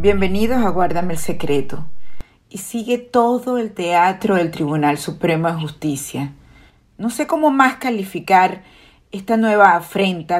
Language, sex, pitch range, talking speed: Spanish, female, 165-220 Hz, 135 wpm